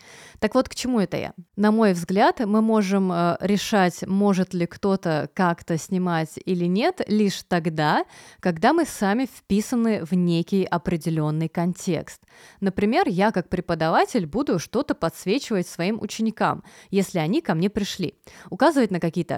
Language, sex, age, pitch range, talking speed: Russian, female, 20-39, 175-225 Hz, 145 wpm